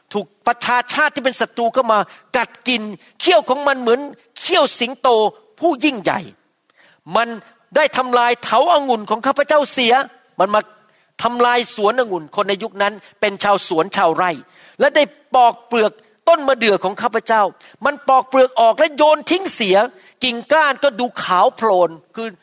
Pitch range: 205-265 Hz